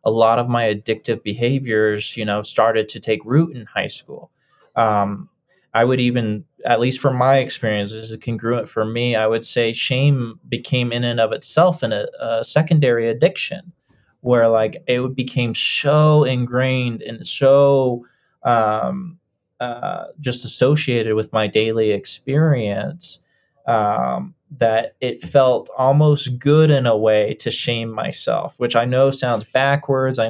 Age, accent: 20-39, American